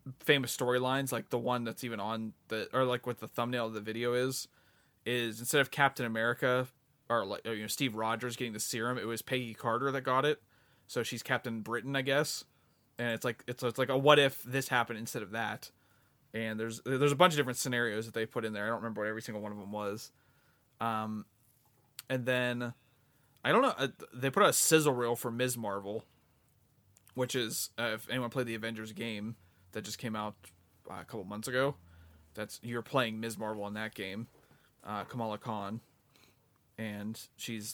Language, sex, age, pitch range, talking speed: English, male, 20-39, 110-130 Hz, 205 wpm